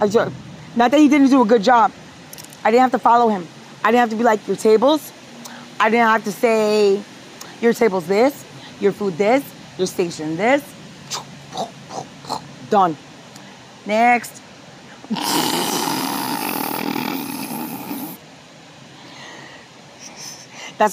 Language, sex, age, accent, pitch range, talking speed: English, female, 40-59, American, 180-235 Hz, 110 wpm